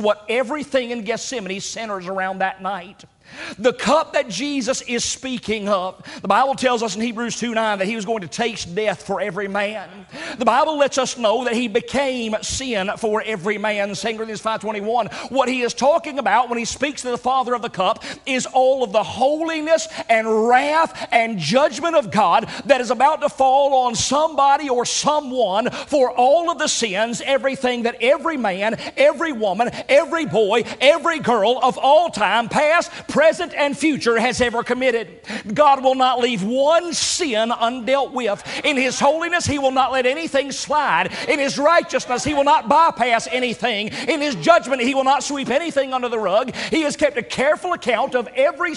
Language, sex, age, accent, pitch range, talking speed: English, male, 40-59, American, 225-290 Hz, 190 wpm